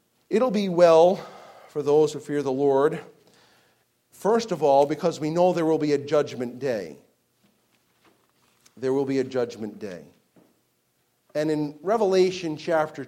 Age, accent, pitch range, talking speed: 40-59, American, 120-150 Hz, 140 wpm